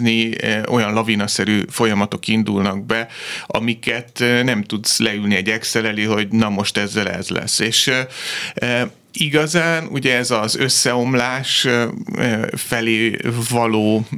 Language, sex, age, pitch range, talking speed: Hungarian, male, 30-49, 105-125 Hz, 105 wpm